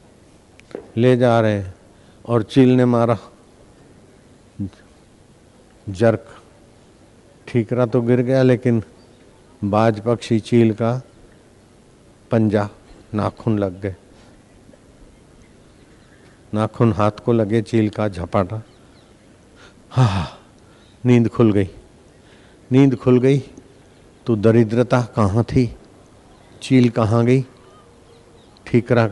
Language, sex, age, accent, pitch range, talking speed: Hindi, male, 50-69, native, 105-120 Hz, 90 wpm